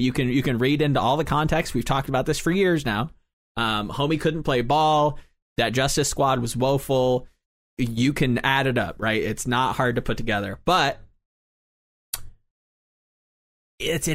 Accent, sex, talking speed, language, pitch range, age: American, male, 170 wpm, English, 110-145 Hz, 20-39